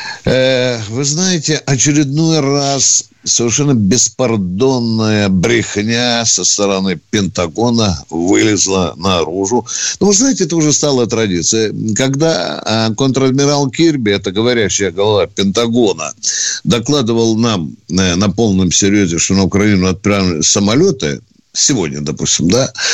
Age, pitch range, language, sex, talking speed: 60-79, 105-145 Hz, Russian, male, 100 wpm